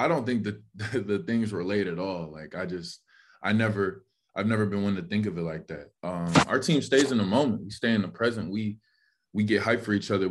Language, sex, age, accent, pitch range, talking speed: English, male, 20-39, American, 90-105 Hz, 255 wpm